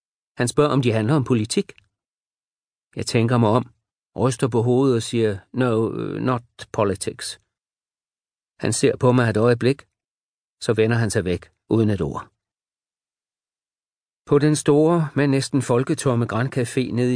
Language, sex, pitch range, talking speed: Danish, male, 115-140 Hz, 145 wpm